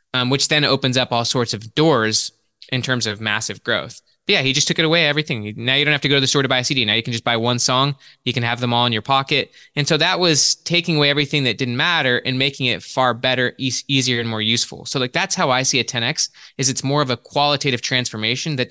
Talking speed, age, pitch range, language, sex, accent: 280 wpm, 20-39, 120-145 Hz, English, male, American